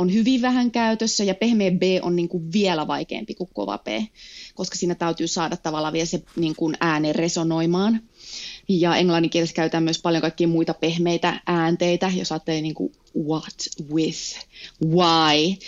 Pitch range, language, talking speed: 165-200 Hz, Finnish, 150 wpm